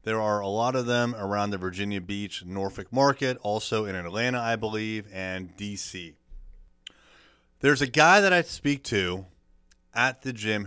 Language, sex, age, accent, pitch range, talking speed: English, male, 30-49, American, 90-130 Hz, 165 wpm